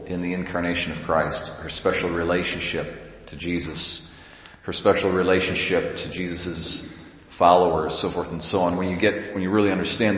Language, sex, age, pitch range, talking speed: English, male, 40-59, 85-100 Hz, 165 wpm